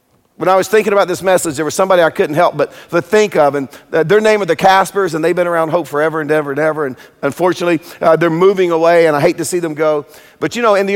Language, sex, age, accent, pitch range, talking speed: English, male, 50-69, American, 160-195 Hz, 280 wpm